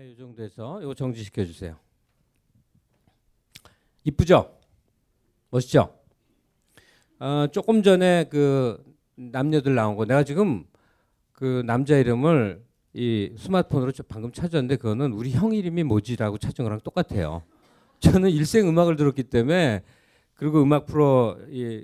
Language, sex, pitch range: Korean, male, 110-150 Hz